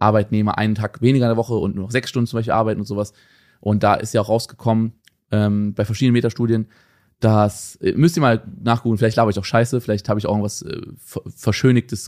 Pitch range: 105-130 Hz